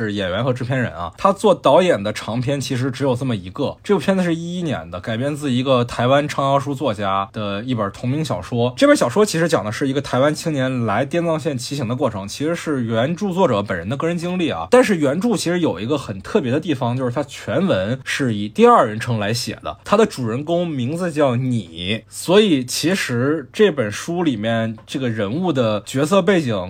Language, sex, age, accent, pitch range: Chinese, male, 20-39, native, 110-165 Hz